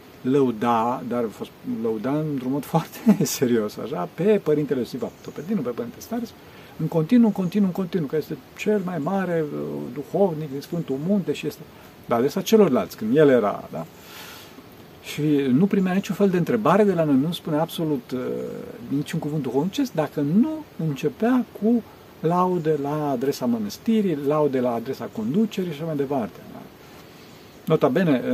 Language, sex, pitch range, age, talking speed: Romanian, male, 140-220 Hz, 50-69, 150 wpm